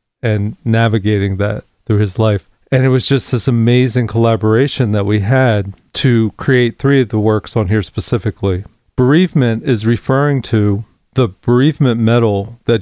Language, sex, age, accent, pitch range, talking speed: English, male, 40-59, American, 105-125 Hz, 155 wpm